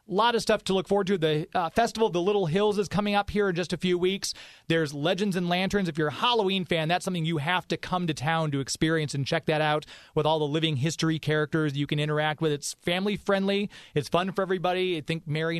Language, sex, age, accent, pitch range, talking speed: English, male, 30-49, American, 160-200 Hz, 255 wpm